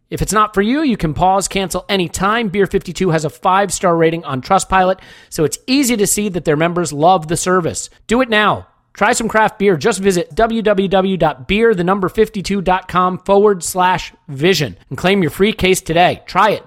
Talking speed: 180 wpm